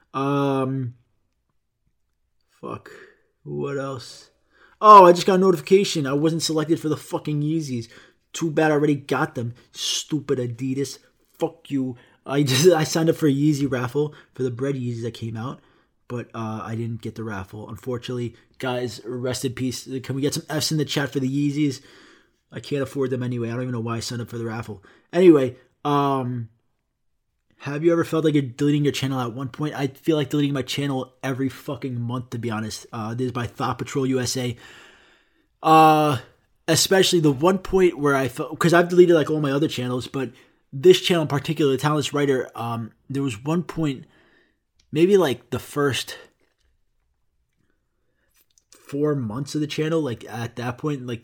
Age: 20-39